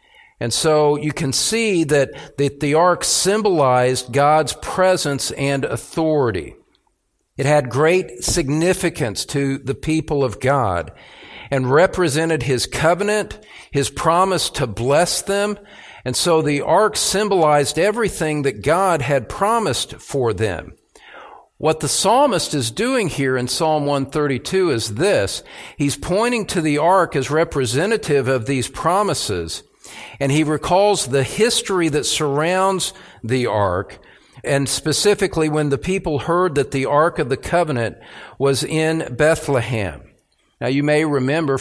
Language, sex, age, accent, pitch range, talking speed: English, male, 50-69, American, 135-170 Hz, 135 wpm